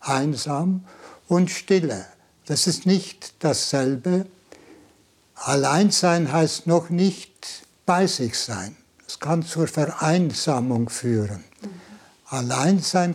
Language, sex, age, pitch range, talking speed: German, male, 60-79, 125-175 Hz, 90 wpm